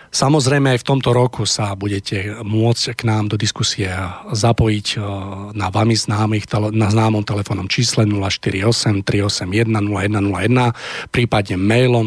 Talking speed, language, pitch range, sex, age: 105 wpm, Slovak, 100-115 Hz, male, 40-59